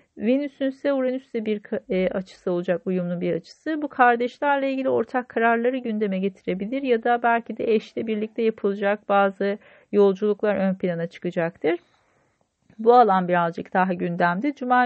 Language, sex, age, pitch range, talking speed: Turkish, female, 40-59, 195-255 Hz, 135 wpm